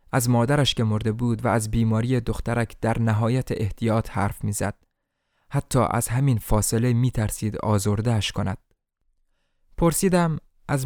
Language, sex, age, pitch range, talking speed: Persian, male, 20-39, 110-145 Hz, 125 wpm